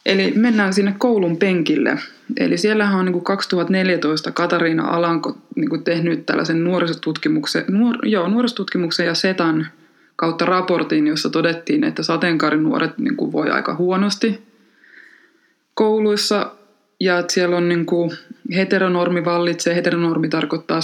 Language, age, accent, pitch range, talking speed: Finnish, 20-39, native, 160-240 Hz, 120 wpm